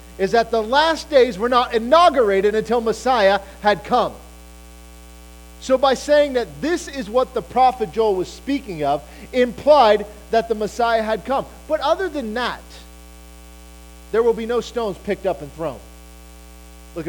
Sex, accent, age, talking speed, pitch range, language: male, American, 40-59, 160 wpm, 170-235 Hz, English